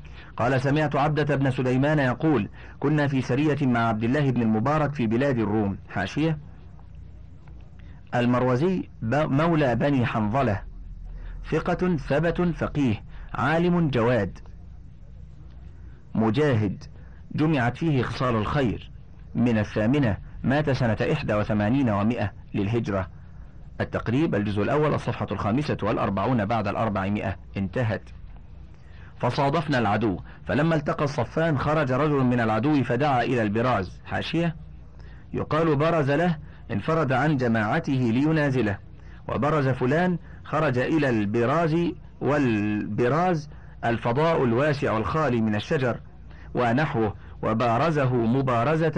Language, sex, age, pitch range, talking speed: Arabic, male, 50-69, 105-145 Hz, 100 wpm